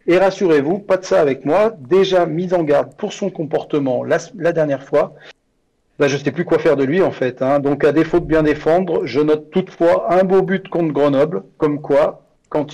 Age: 40-59